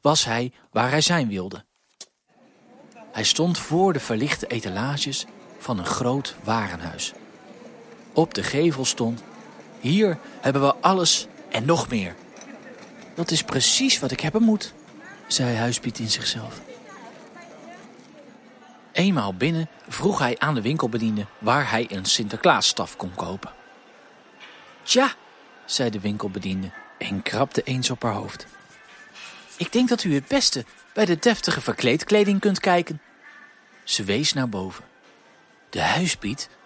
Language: Dutch